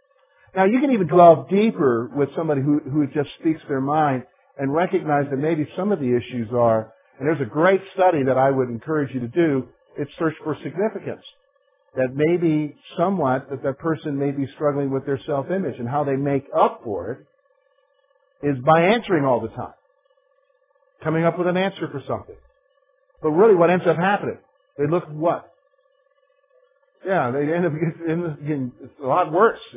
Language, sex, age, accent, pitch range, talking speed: English, male, 50-69, American, 145-225 Hz, 180 wpm